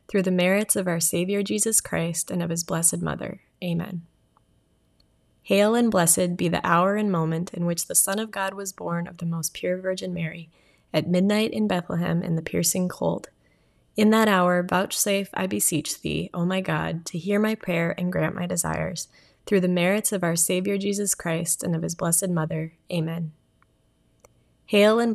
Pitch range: 165-195 Hz